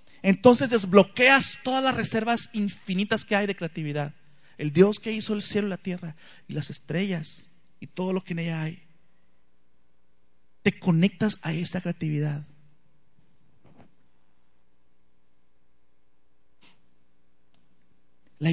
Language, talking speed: Spanish, 115 wpm